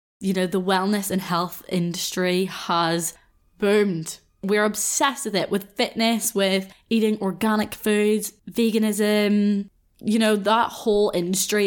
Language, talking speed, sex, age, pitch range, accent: English, 130 wpm, female, 10-29, 190-220 Hz, British